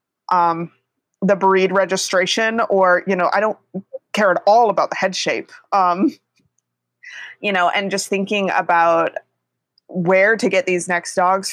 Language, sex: English, female